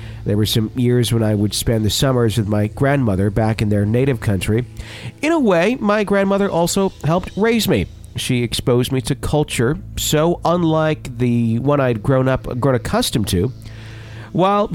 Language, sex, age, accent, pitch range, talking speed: English, male, 50-69, American, 105-125 Hz, 175 wpm